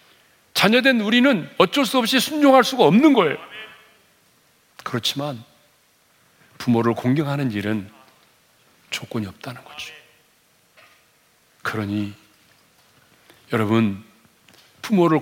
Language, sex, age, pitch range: Korean, male, 40-59, 110-140 Hz